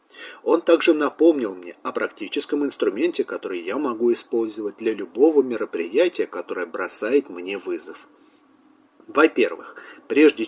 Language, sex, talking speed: English, male, 115 wpm